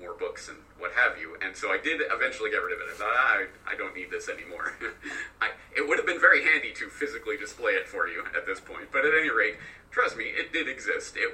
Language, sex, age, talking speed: English, male, 40-59, 255 wpm